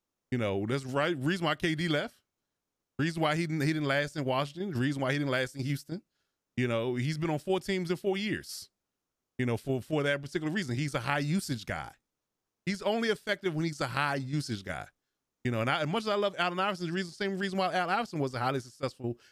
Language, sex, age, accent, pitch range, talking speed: English, male, 30-49, American, 130-180 Hz, 240 wpm